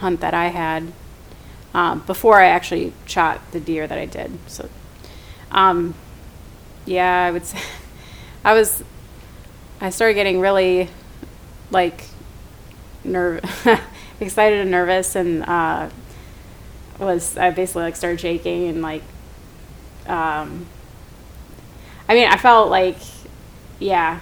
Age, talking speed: 20-39, 120 wpm